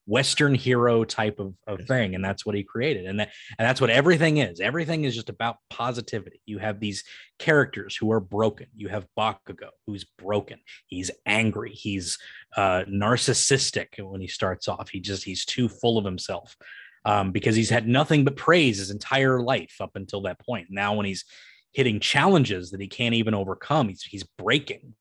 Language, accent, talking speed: English, American, 185 wpm